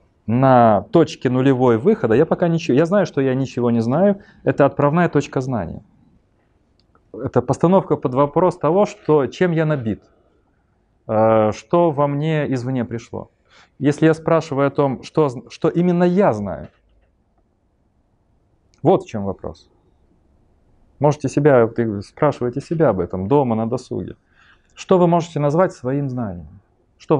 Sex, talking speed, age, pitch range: male, 135 wpm, 30-49, 105-150 Hz